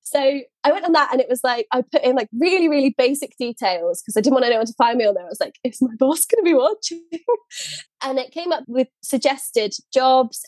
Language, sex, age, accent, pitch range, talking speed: English, female, 20-39, British, 200-275 Hz, 250 wpm